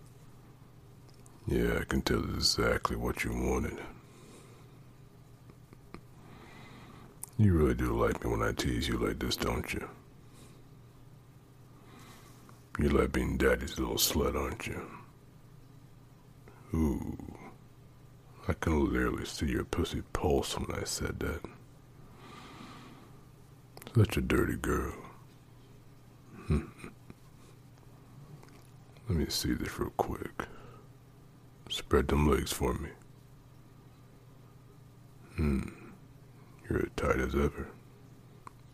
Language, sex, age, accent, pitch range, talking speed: English, male, 60-79, American, 110-135 Hz, 100 wpm